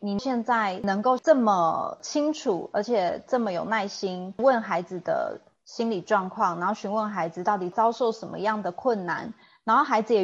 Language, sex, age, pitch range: Chinese, female, 30-49, 180-235 Hz